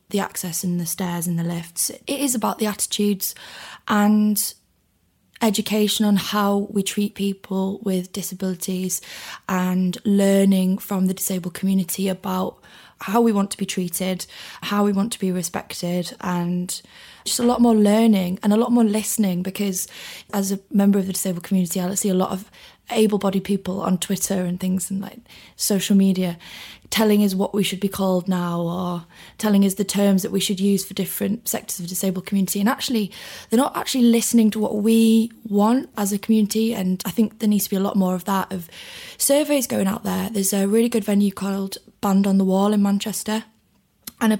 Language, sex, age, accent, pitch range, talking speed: English, female, 20-39, British, 190-220 Hz, 195 wpm